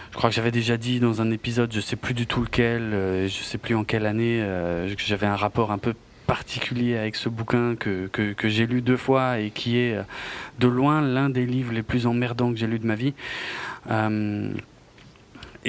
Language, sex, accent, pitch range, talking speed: French, male, French, 105-135 Hz, 220 wpm